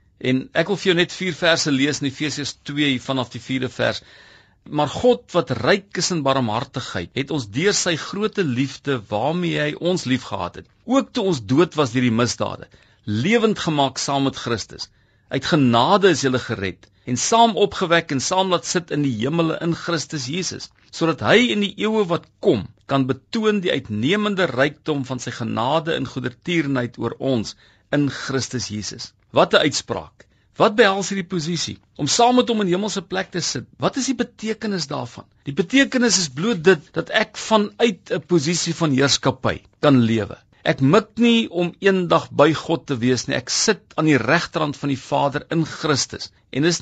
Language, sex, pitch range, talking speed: English, male, 130-180 Hz, 180 wpm